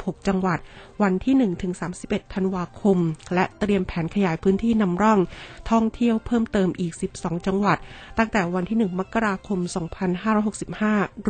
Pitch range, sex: 180-210 Hz, female